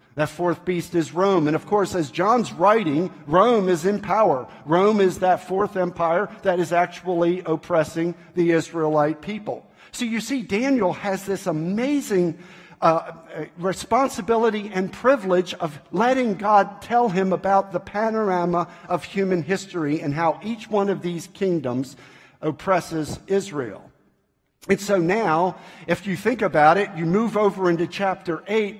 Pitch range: 160-195 Hz